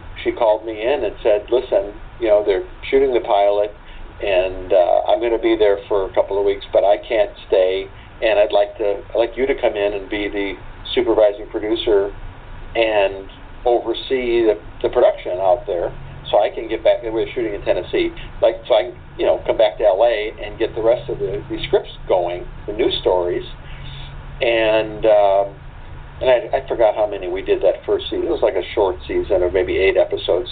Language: English